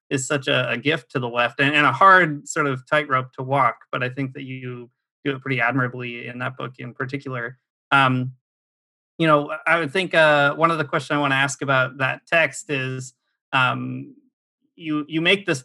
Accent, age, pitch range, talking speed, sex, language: American, 30-49, 130-150 Hz, 210 wpm, male, English